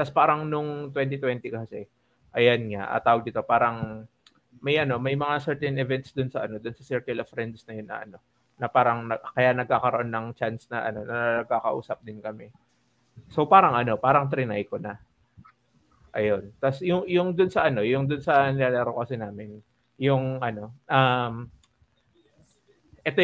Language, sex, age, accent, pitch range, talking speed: Filipino, male, 20-39, native, 115-145 Hz, 170 wpm